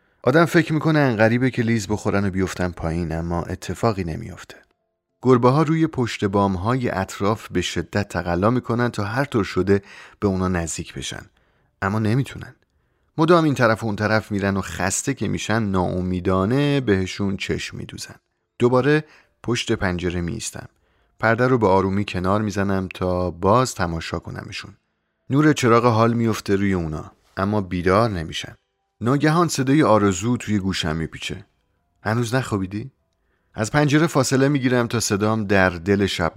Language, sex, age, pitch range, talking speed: Persian, male, 30-49, 90-120 Hz, 145 wpm